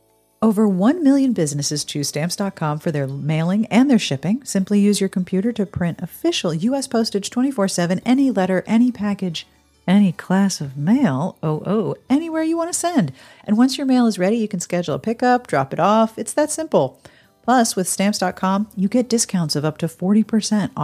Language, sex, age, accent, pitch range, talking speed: English, female, 40-59, American, 175-250 Hz, 185 wpm